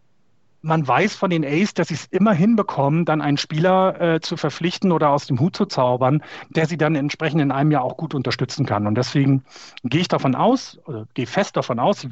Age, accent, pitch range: 40-59, German, 130-175 Hz